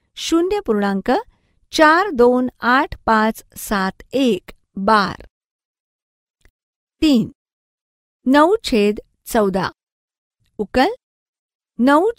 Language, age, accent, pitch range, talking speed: Marathi, 50-69, native, 215-295 Hz, 75 wpm